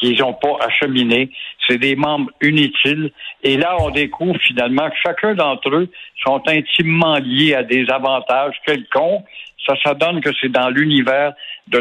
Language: French